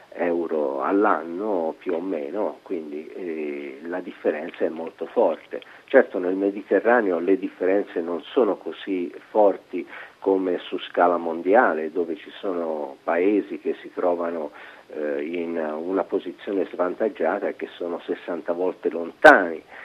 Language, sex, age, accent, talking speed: Italian, male, 50-69, native, 125 wpm